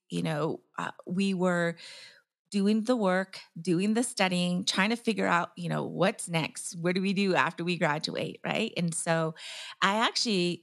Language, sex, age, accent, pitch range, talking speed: English, female, 30-49, American, 170-210 Hz, 175 wpm